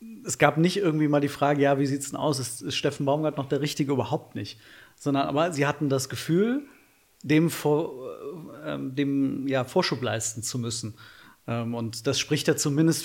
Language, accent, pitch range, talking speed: German, German, 125-145 Hz, 185 wpm